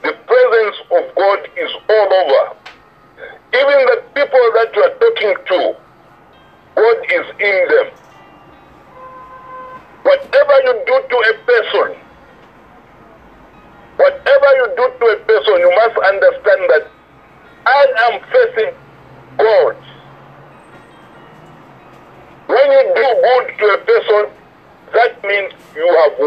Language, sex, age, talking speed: English, male, 60-79, 115 wpm